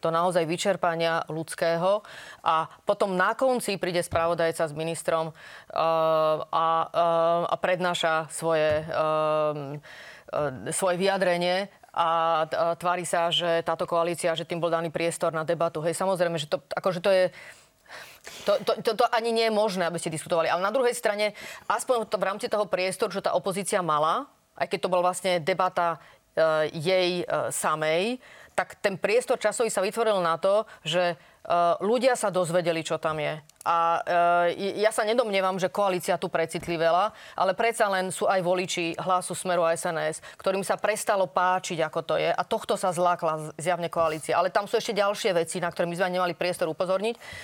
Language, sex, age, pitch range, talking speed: Slovak, female, 30-49, 165-200 Hz, 170 wpm